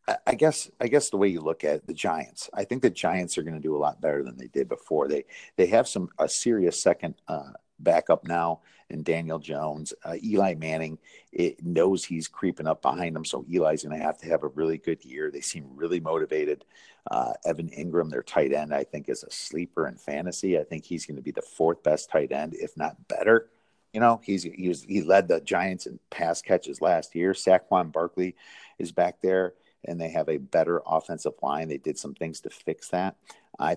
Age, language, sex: 50-69, English, male